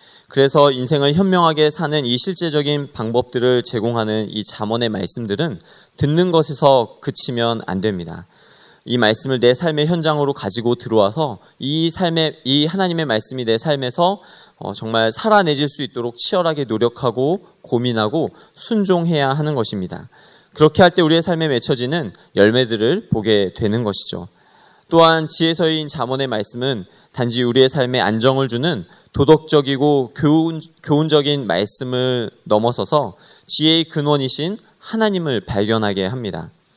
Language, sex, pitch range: Korean, male, 120-160 Hz